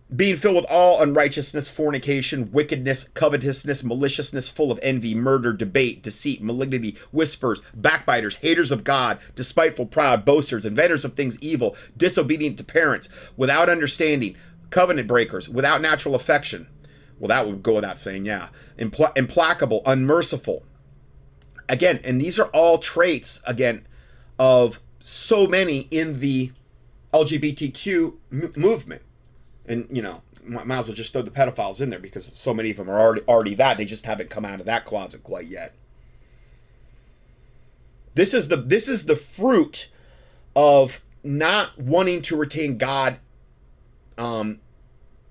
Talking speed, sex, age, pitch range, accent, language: 140 wpm, male, 30-49, 115-155 Hz, American, English